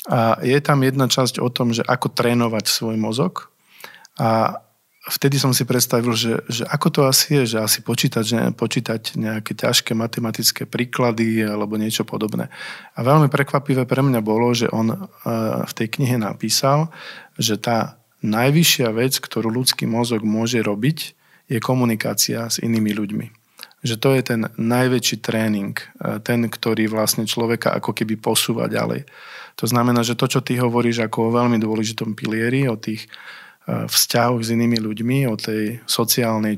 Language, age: Slovak, 40-59